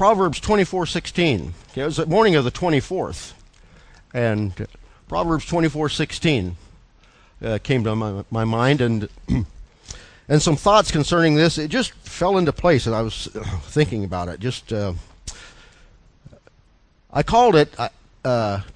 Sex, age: male, 50-69